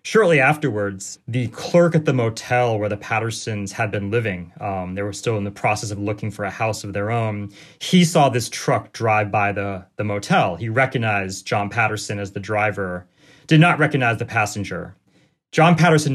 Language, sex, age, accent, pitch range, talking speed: English, male, 30-49, American, 105-135 Hz, 190 wpm